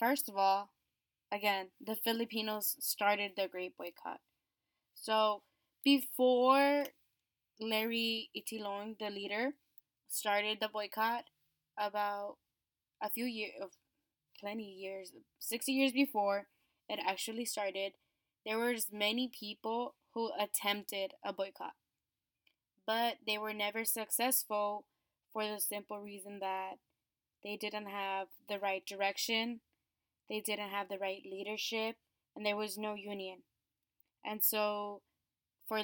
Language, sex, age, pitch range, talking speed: English, female, 10-29, 200-225 Hz, 115 wpm